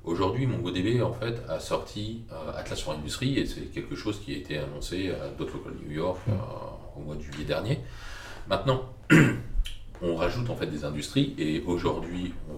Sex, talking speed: male, 190 wpm